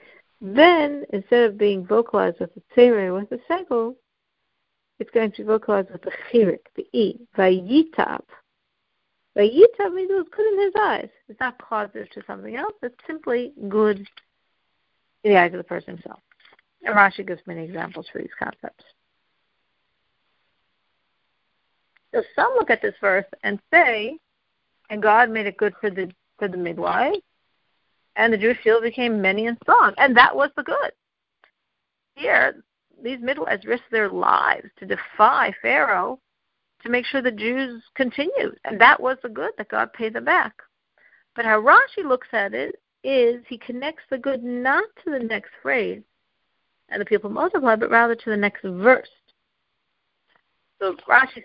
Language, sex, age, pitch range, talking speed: English, female, 50-69, 210-285 Hz, 160 wpm